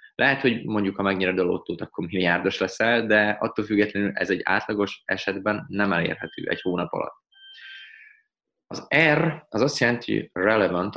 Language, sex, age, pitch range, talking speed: Hungarian, male, 20-39, 90-120 Hz, 160 wpm